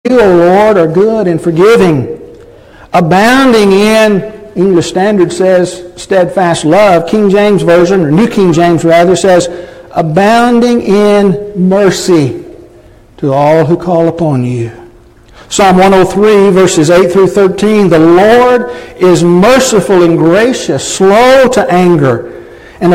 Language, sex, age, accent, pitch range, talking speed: English, male, 60-79, American, 175-220 Hz, 125 wpm